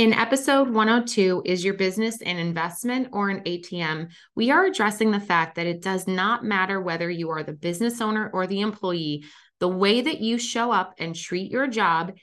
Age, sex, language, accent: 20-39, female, English, American